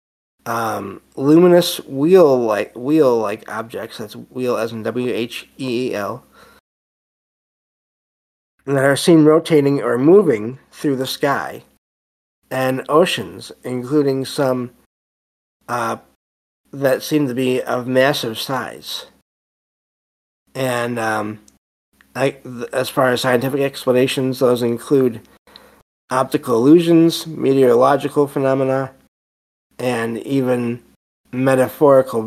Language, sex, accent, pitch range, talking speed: English, male, American, 110-135 Hz, 85 wpm